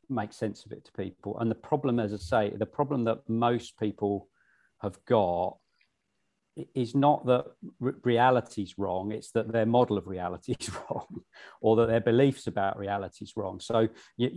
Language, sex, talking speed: English, male, 175 wpm